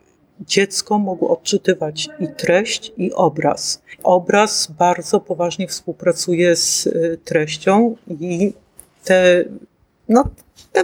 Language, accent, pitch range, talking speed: Polish, native, 165-205 Hz, 95 wpm